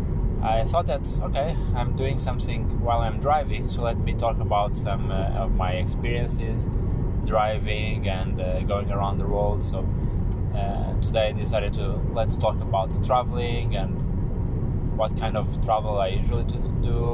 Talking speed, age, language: 160 wpm, 20-39, English